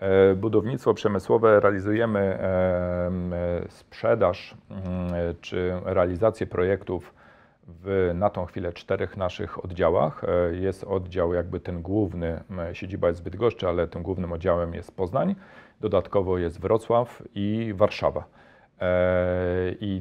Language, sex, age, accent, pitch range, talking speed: Polish, male, 40-59, native, 90-100 Hz, 105 wpm